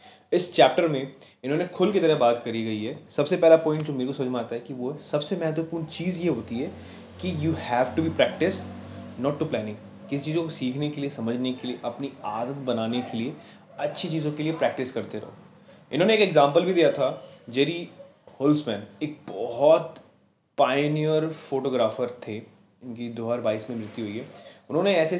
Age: 20-39